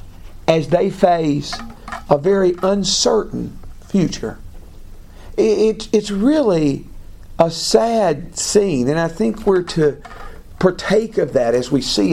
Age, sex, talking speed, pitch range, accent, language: 50-69, male, 115 wpm, 155-220 Hz, American, English